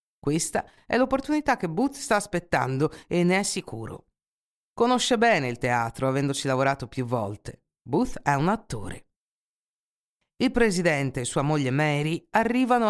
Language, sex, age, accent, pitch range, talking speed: Italian, female, 50-69, native, 130-195 Hz, 140 wpm